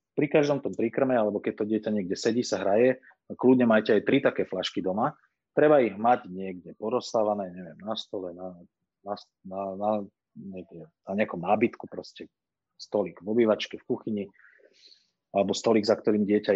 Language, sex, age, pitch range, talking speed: Slovak, male, 30-49, 100-120 Hz, 165 wpm